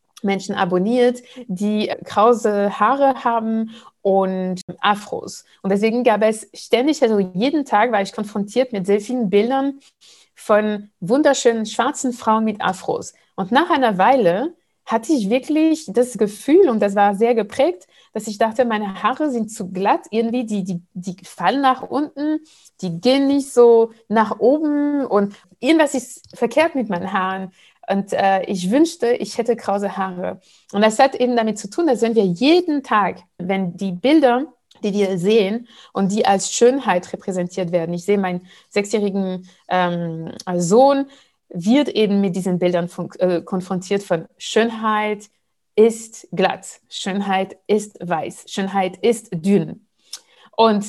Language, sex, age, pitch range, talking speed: German, female, 60-79, 190-245 Hz, 150 wpm